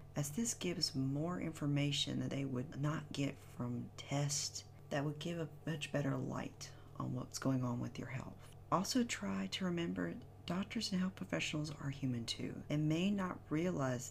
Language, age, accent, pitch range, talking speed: English, 40-59, American, 125-155 Hz, 175 wpm